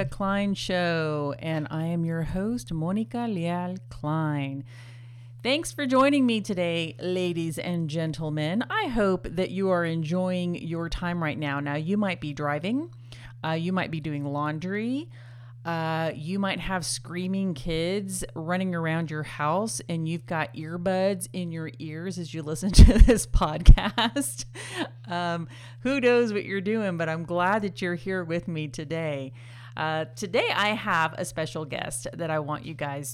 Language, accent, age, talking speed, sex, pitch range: English, American, 40-59, 160 wpm, female, 145-180 Hz